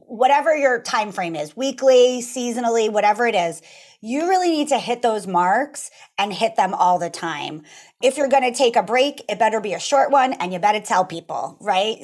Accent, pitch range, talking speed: American, 190-260 Hz, 210 wpm